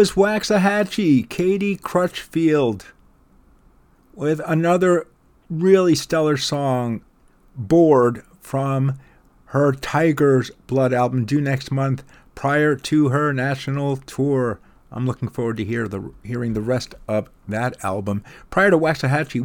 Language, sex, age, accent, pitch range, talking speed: English, male, 50-69, American, 115-145 Hz, 115 wpm